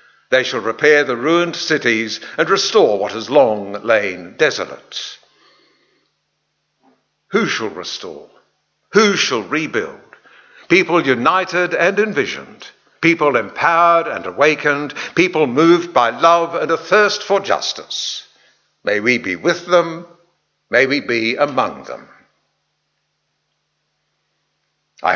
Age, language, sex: 60-79, English, male